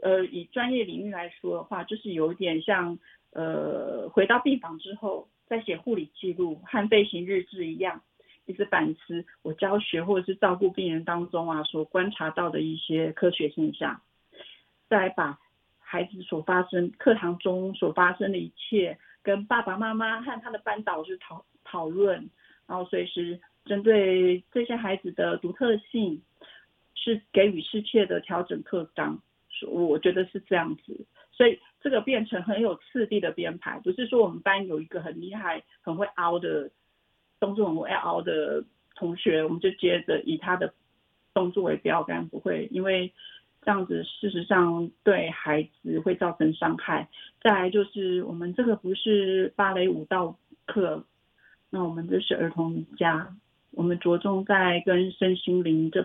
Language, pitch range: Chinese, 170-205 Hz